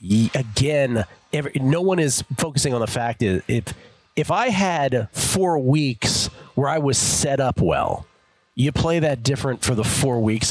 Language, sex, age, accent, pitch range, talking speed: English, male, 40-59, American, 100-150 Hz, 170 wpm